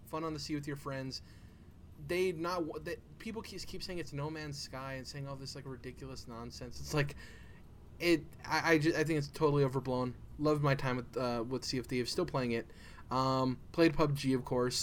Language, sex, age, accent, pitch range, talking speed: English, male, 20-39, American, 115-140 Hz, 215 wpm